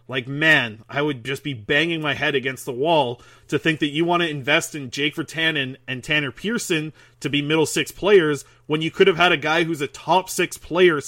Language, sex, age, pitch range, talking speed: English, male, 30-49, 145-200 Hz, 225 wpm